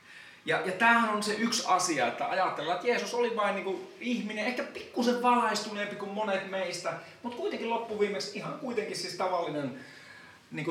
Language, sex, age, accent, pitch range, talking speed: Finnish, male, 30-49, native, 165-230 Hz, 170 wpm